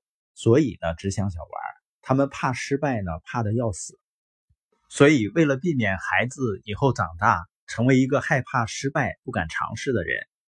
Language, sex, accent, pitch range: Chinese, male, native, 105-140 Hz